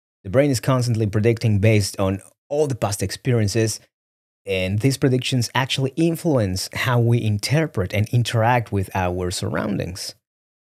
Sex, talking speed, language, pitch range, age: male, 135 wpm, English, 100-140 Hz, 30-49